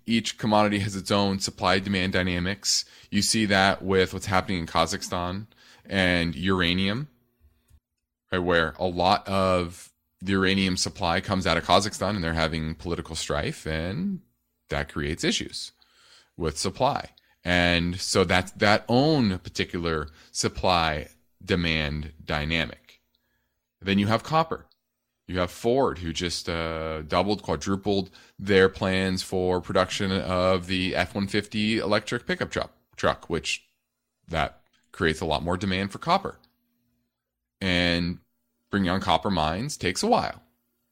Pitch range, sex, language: 80-100 Hz, male, English